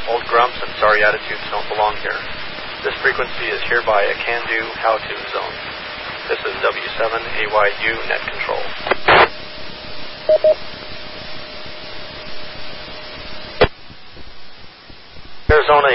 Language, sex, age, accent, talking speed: English, male, 40-59, American, 90 wpm